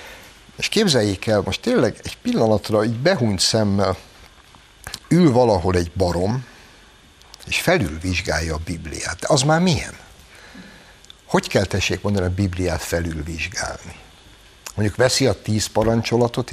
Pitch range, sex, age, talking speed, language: 95-130 Hz, male, 60-79, 125 wpm, Hungarian